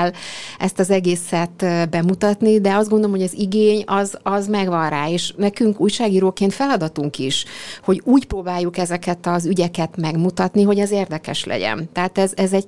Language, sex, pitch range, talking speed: Hungarian, female, 170-200 Hz, 160 wpm